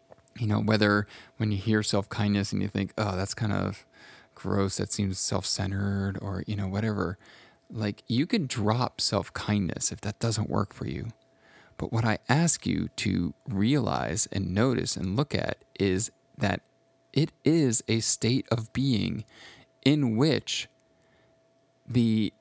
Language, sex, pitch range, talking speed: English, male, 100-115 Hz, 150 wpm